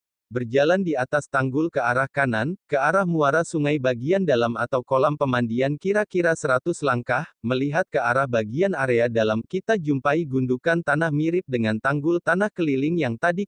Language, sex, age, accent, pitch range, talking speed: Indonesian, male, 30-49, native, 125-165 Hz, 160 wpm